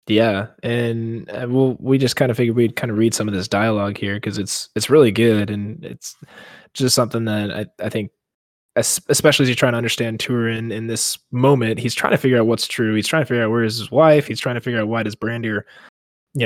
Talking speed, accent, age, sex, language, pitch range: 250 wpm, American, 20-39, male, English, 110-140 Hz